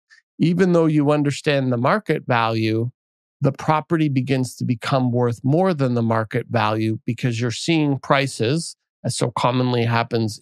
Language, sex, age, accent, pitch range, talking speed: English, male, 50-69, American, 115-145 Hz, 150 wpm